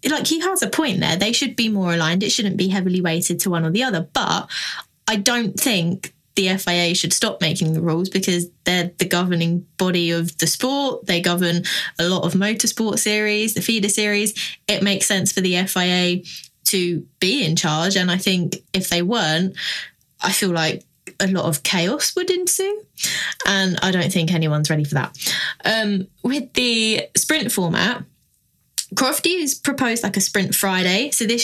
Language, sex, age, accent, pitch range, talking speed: English, female, 20-39, British, 175-215 Hz, 185 wpm